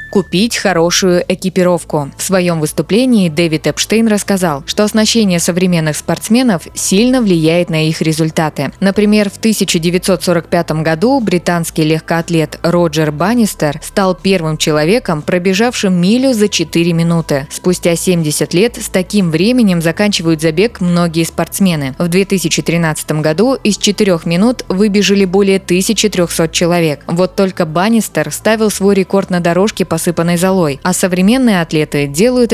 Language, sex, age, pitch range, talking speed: Russian, female, 20-39, 165-205 Hz, 125 wpm